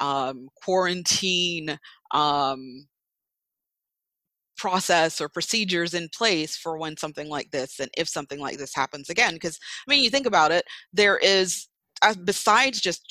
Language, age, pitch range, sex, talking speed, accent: English, 30-49, 150-195 Hz, female, 140 wpm, American